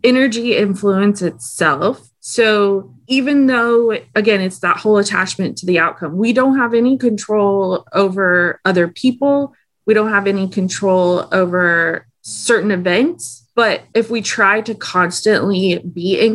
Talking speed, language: 140 wpm, English